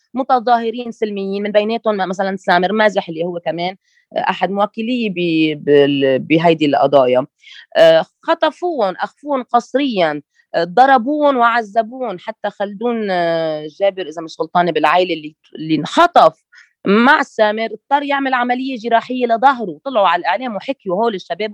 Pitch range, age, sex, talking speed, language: 175-240 Hz, 20-39, female, 115 wpm, Arabic